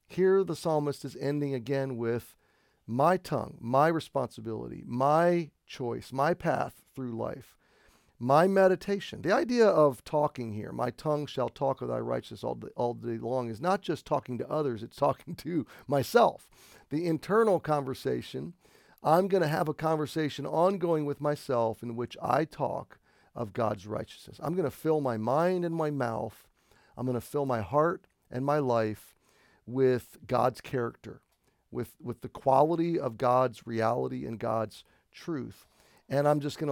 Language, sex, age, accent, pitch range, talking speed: English, male, 40-59, American, 120-150 Hz, 155 wpm